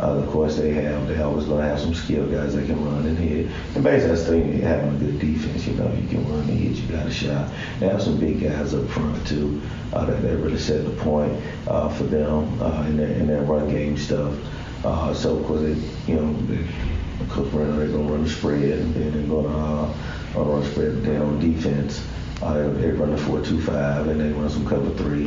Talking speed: 240 wpm